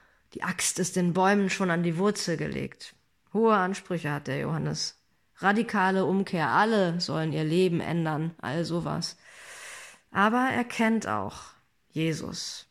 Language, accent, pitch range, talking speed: German, German, 170-210 Hz, 135 wpm